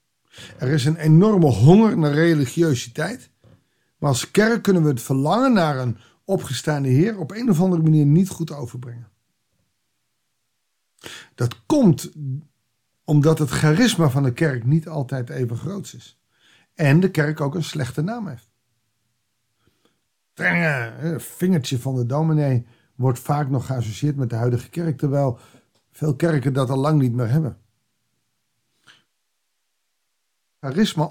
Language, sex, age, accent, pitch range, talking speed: Dutch, male, 50-69, Dutch, 125-165 Hz, 135 wpm